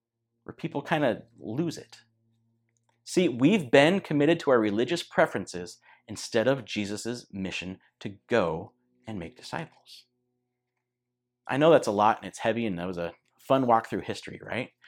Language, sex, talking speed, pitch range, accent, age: English, male, 160 wpm, 115-160 Hz, American, 30-49